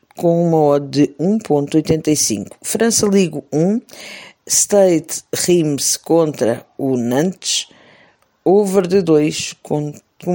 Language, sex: Portuguese, female